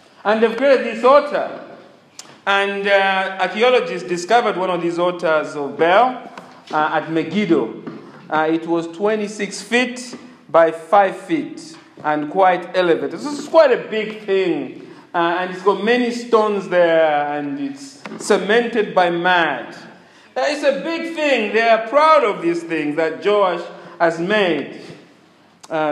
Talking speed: 145 wpm